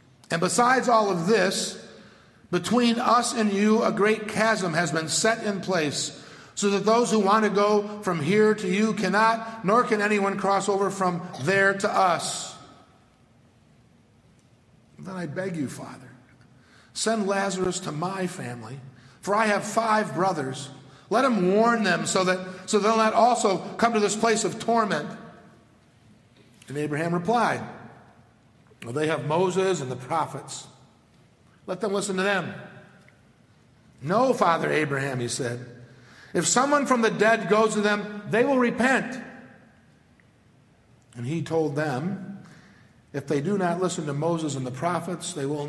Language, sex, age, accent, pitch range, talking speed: English, male, 50-69, American, 140-210 Hz, 155 wpm